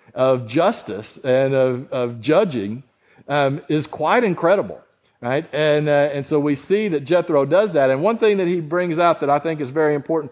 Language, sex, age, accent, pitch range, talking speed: English, male, 50-69, American, 130-170 Hz, 200 wpm